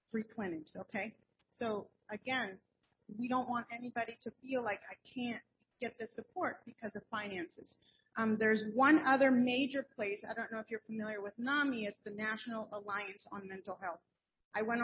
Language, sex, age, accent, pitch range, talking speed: English, female, 30-49, American, 210-245 Hz, 175 wpm